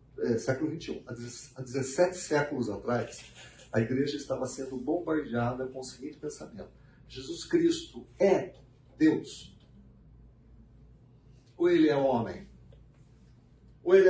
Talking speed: 110 wpm